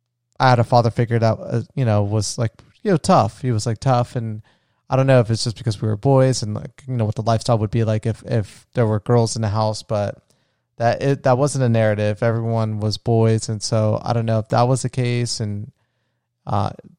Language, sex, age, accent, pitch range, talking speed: English, male, 30-49, American, 110-125 Hz, 240 wpm